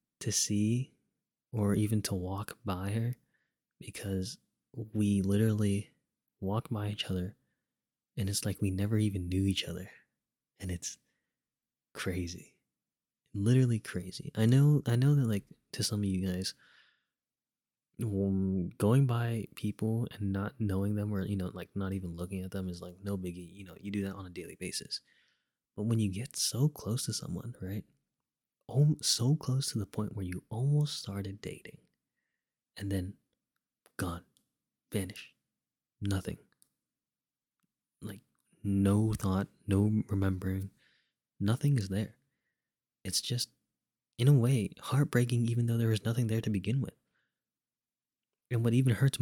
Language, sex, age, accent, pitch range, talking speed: English, male, 20-39, American, 95-115 Hz, 150 wpm